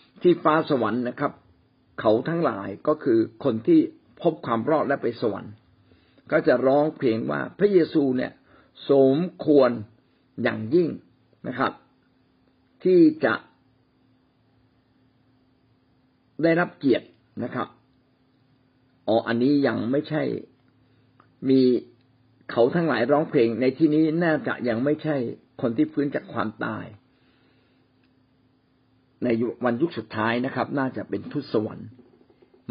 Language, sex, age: Thai, male, 60-79